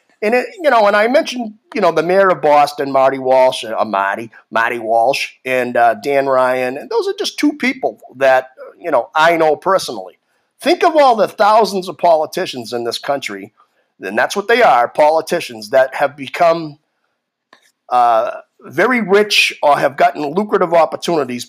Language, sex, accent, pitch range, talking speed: English, male, American, 130-185 Hz, 175 wpm